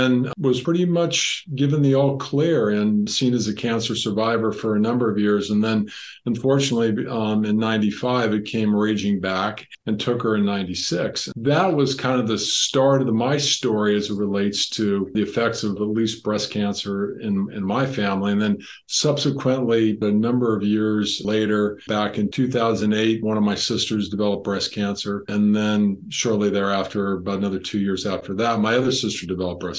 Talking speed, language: 180 wpm, English